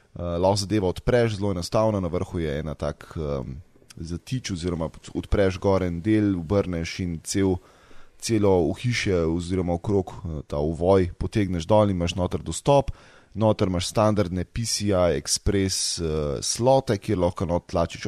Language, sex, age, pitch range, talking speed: English, male, 20-39, 90-110 Hz, 155 wpm